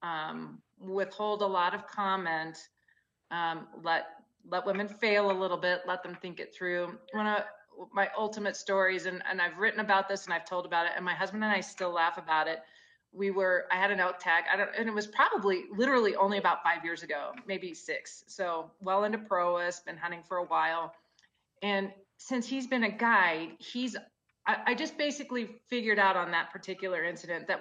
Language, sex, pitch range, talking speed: English, female, 170-210 Hz, 200 wpm